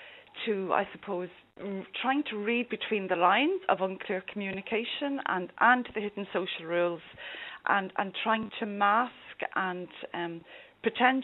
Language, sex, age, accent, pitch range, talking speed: English, female, 30-49, British, 180-220 Hz, 140 wpm